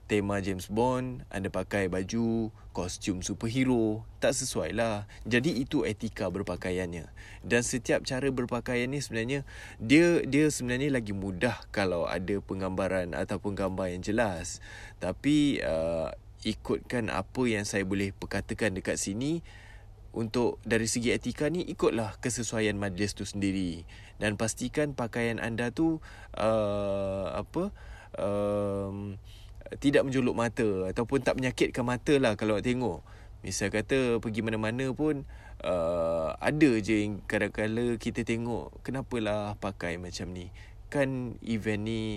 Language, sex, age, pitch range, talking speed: Malay, male, 20-39, 100-120 Hz, 130 wpm